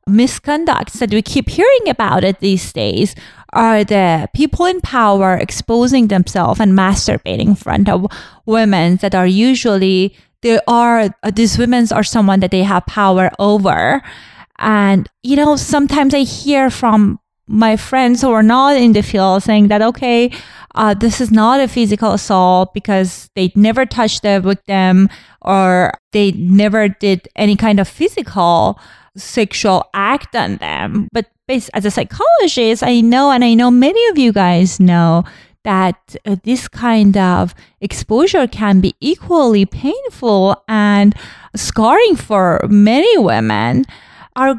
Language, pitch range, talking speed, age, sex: English, 195-245 Hz, 150 wpm, 20-39, female